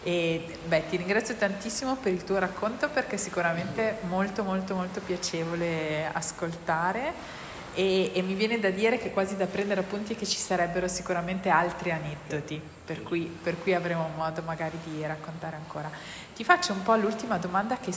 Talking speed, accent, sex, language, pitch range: 175 wpm, native, female, Italian, 170-205 Hz